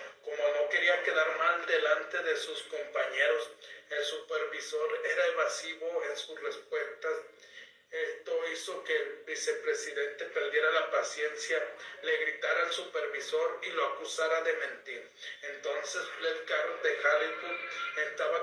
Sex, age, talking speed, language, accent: male, 40-59, 125 wpm, Spanish, Mexican